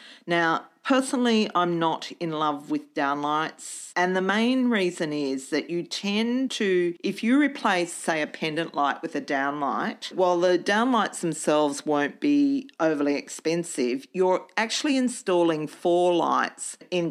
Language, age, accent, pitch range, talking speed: English, 40-59, Australian, 145-220 Hz, 145 wpm